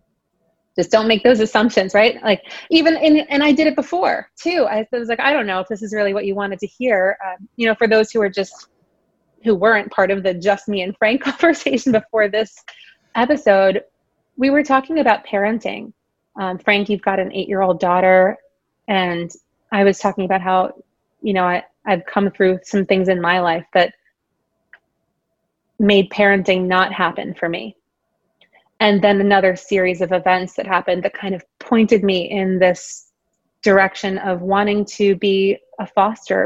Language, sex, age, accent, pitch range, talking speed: English, female, 20-39, American, 190-225 Hz, 175 wpm